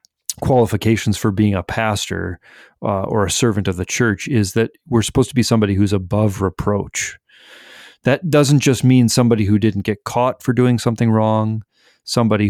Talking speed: 175 wpm